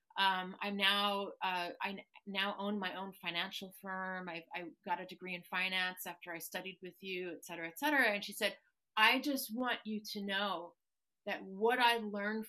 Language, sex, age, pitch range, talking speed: English, female, 30-49, 190-230 Hz, 190 wpm